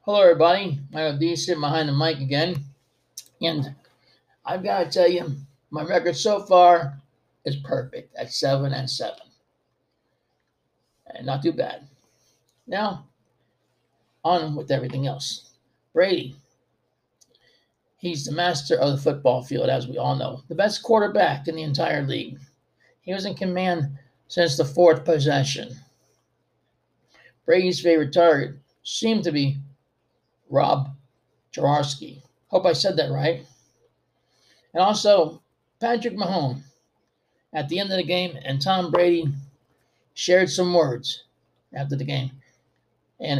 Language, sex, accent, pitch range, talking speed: English, male, American, 140-175 Hz, 130 wpm